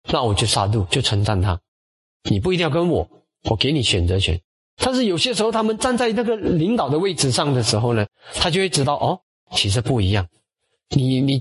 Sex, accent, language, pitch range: male, native, Chinese, 105-165 Hz